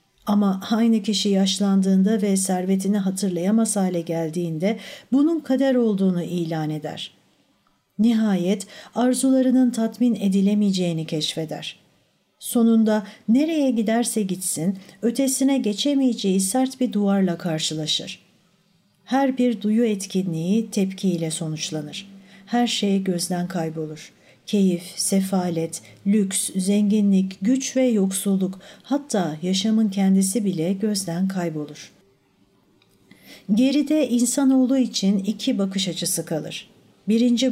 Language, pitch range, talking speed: Turkish, 185-230 Hz, 95 wpm